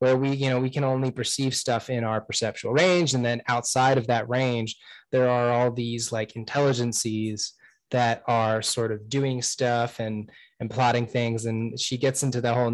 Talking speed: 195 wpm